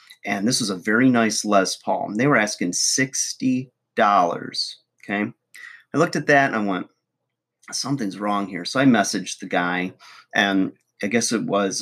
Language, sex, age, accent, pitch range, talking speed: English, male, 30-49, American, 95-125 Hz, 170 wpm